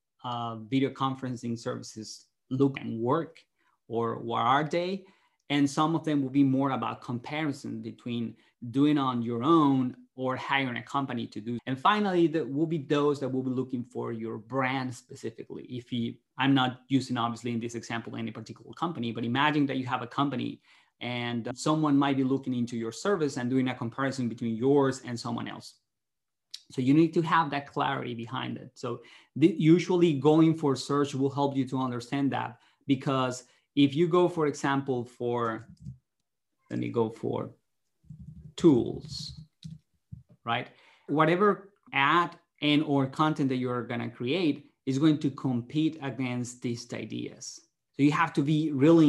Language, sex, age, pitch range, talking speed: English, male, 30-49, 120-145 Hz, 165 wpm